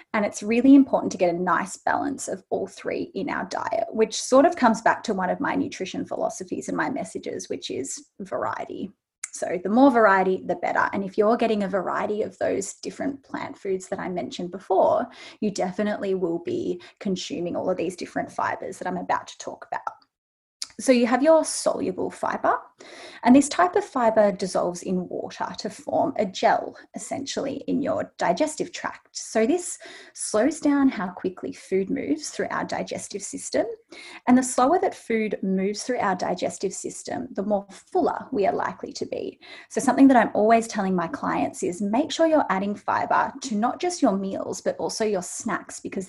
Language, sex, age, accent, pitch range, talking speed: English, female, 20-39, Australian, 210-325 Hz, 190 wpm